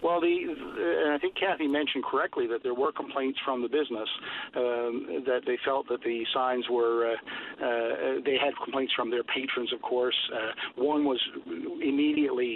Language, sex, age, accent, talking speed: English, male, 50-69, American, 175 wpm